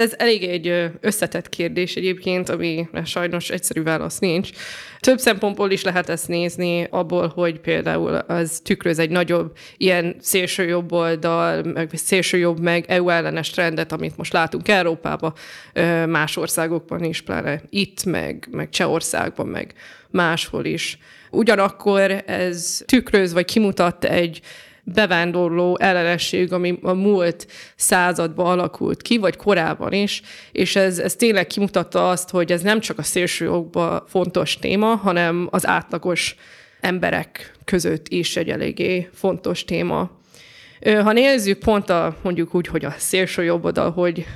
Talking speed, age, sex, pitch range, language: 135 wpm, 20-39, female, 170-195 Hz, Hungarian